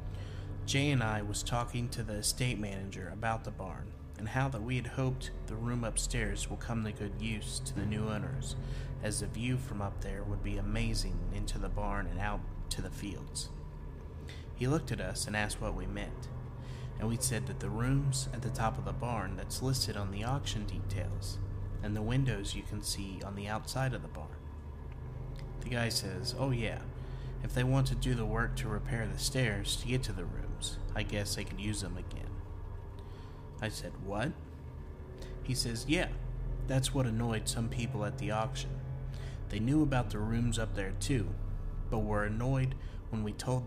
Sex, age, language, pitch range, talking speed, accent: male, 30-49, English, 95-125 Hz, 195 wpm, American